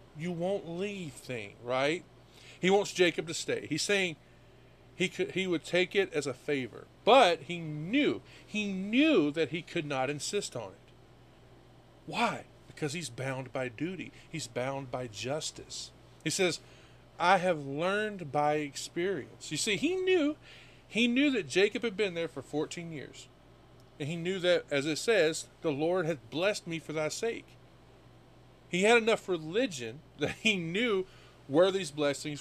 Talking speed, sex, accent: 165 wpm, male, American